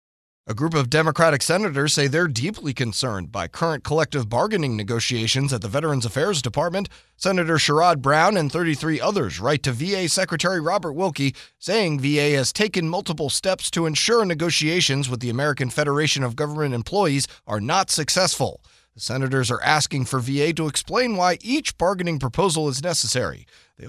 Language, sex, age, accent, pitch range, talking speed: English, male, 30-49, American, 125-175 Hz, 165 wpm